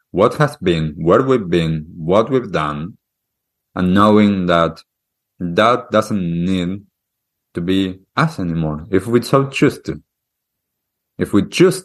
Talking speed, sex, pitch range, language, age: 135 wpm, male, 85-110 Hz, English, 30-49